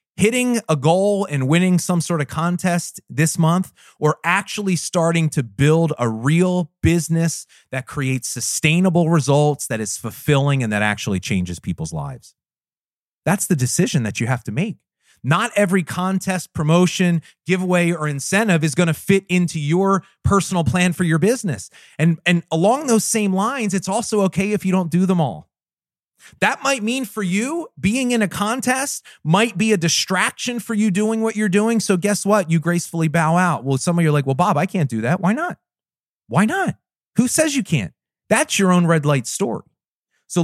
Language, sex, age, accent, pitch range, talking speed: English, male, 30-49, American, 150-200 Hz, 185 wpm